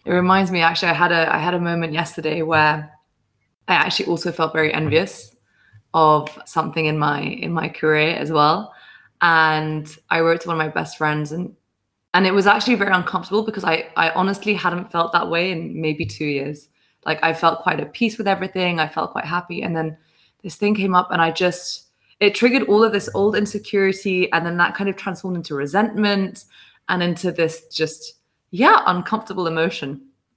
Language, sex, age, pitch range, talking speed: English, female, 20-39, 155-185 Hz, 195 wpm